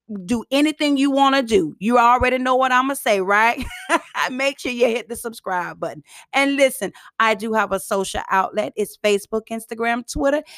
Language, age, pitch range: English, 30-49, 190-245 Hz